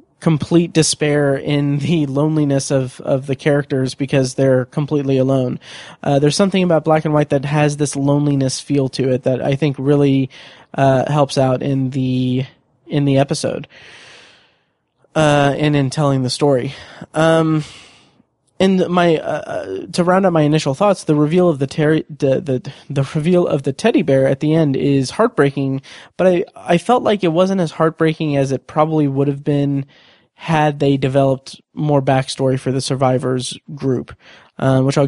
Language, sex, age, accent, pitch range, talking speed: English, male, 20-39, American, 135-155 Hz, 175 wpm